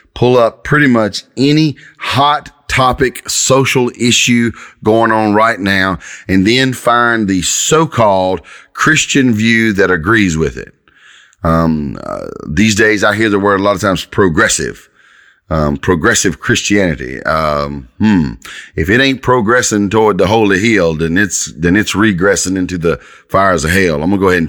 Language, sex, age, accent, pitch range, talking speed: English, male, 30-49, American, 90-115 Hz, 160 wpm